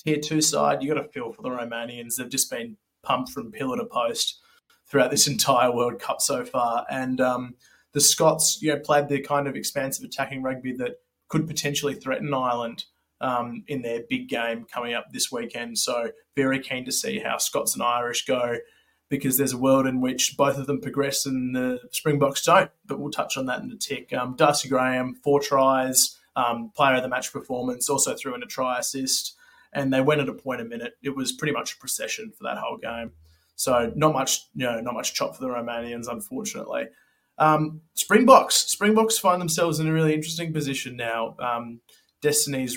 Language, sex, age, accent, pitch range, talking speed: English, male, 20-39, Australian, 125-155 Hz, 200 wpm